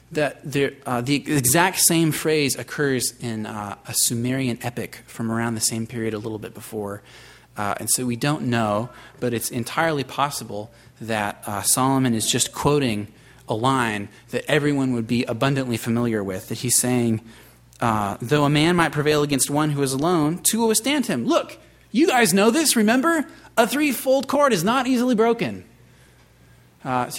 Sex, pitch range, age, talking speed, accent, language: male, 115-150 Hz, 30-49, 175 wpm, American, English